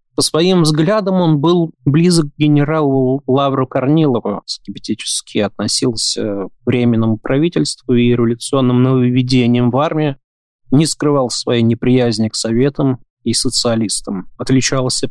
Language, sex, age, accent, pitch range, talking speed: Russian, male, 20-39, native, 120-150 Hz, 115 wpm